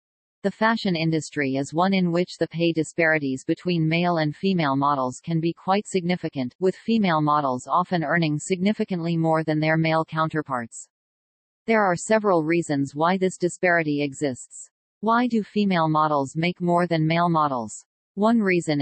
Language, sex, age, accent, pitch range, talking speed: English, female, 40-59, American, 150-180 Hz, 155 wpm